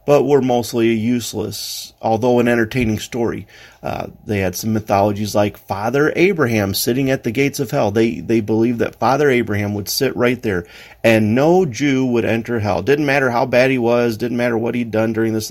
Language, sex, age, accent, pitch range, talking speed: English, male, 30-49, American, 105-125 Hz, 195 wpm